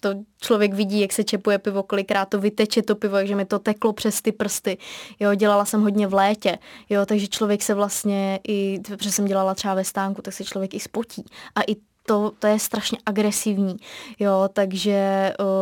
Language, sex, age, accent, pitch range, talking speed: Czech, female, 20-39, native, 195-210 Hz, 190 wpm